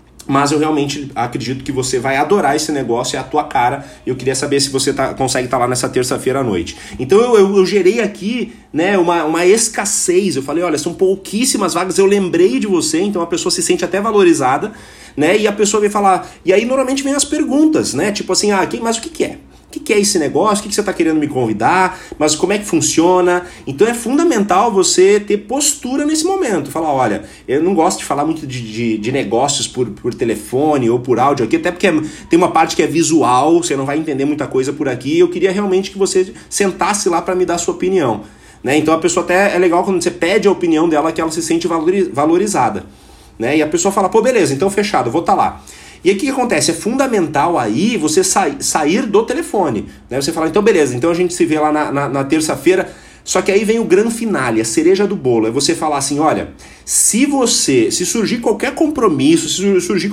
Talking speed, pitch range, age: 230 wpm, 150-230 Hz, 30-49